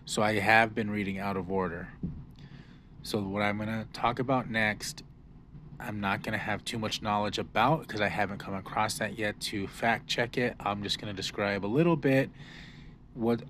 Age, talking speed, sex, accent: 30-49, 200 wpm, male, American